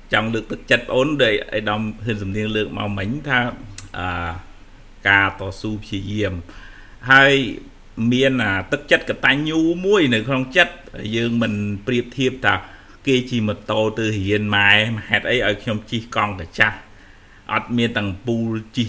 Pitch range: 100-120 Hz